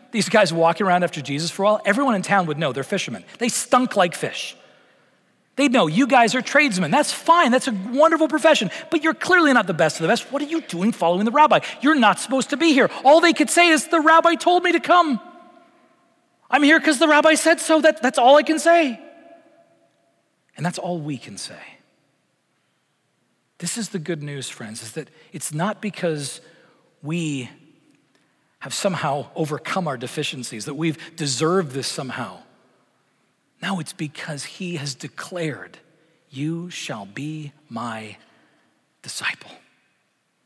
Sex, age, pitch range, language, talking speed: male, 40-59, 165-260 Hz, English, 170 wpm